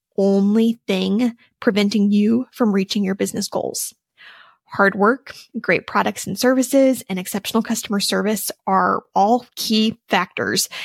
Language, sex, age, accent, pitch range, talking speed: English, female, 20-39, American, 200-235 Hz, 125 wpm